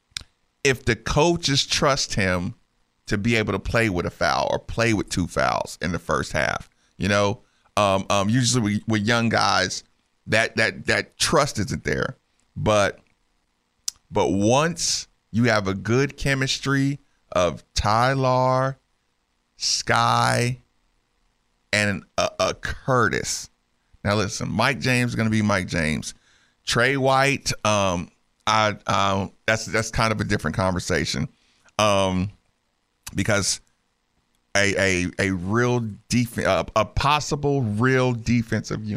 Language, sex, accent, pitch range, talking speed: English, male, American, 90-115 Hz, 130 wpm